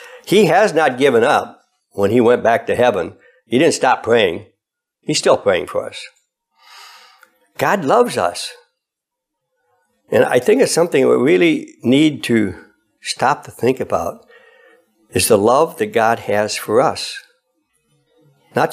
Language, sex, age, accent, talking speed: English, male, 60-79, American, 145 wpm